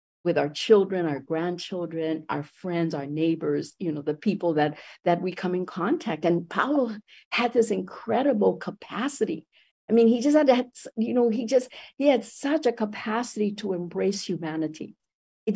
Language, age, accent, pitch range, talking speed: English, 50-69, American, 185-235 Hz, 170 wpm